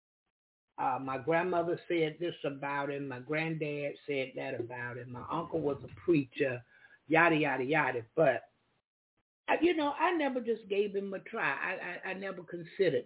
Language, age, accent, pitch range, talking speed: English, 60-79, American, 145-200 Hz, 165 wpm